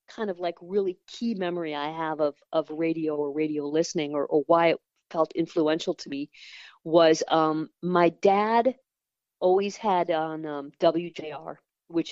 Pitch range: 155-190 Hz